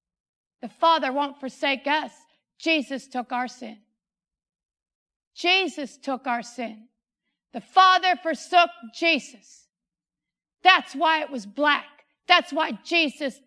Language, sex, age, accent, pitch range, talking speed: English, female, 50-69, American, 250-335 Hz, 110 wpm